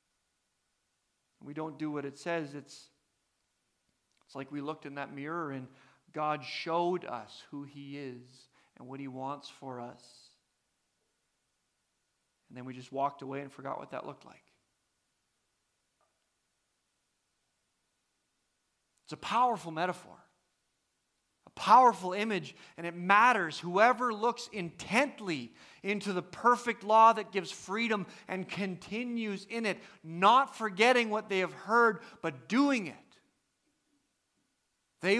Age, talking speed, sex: 40-59, 125 wpm, male